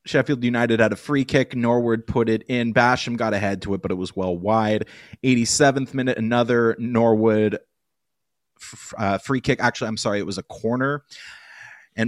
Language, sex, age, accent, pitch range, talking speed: English, male, 30-49, American, 105-130 Hz, 175 wpm